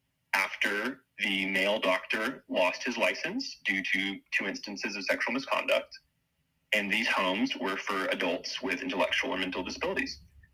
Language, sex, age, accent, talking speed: English, male, 30-49, American, 140 wpm